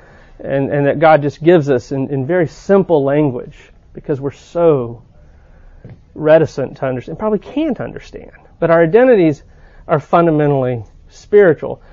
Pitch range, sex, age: 135-160 Hz, male, 40-59